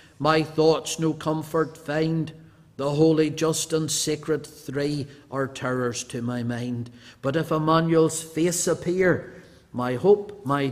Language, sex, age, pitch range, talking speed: English, male, 50-69, 125-170 Hz, 135 wpm